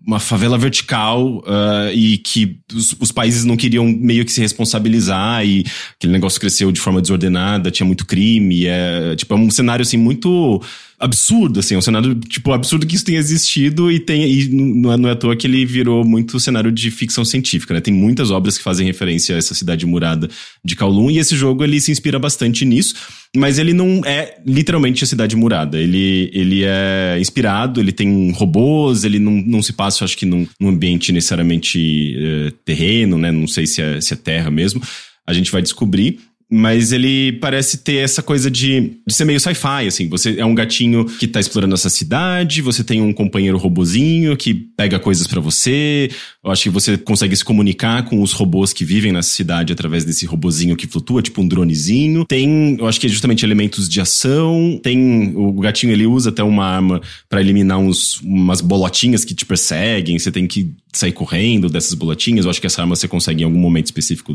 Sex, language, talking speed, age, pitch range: male, English, 200 wpm, 20-39, 95-130 Hz